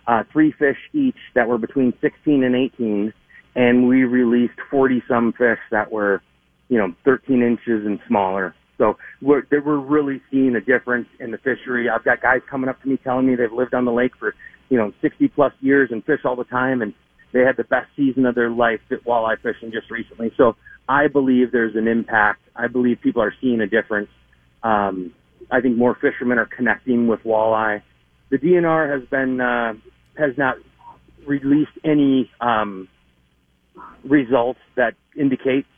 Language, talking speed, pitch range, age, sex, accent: English, 180 wpm, 110-140 Hz, 40-59, male, American